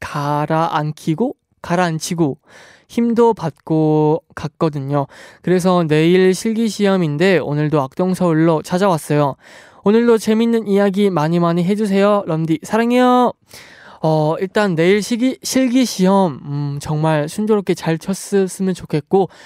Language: Korean